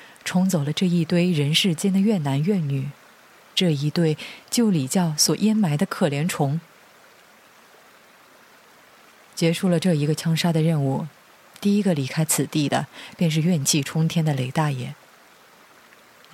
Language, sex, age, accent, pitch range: Chinese, female, 30-49, native, 150-195 Hz